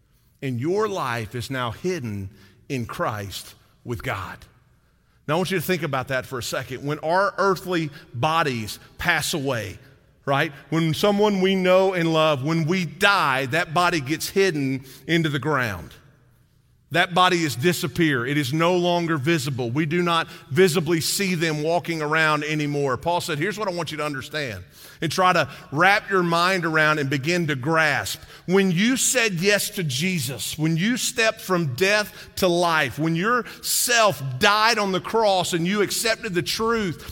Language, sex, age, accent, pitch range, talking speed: English, male, 40-59, American, 140-190 Hz, 175 wpm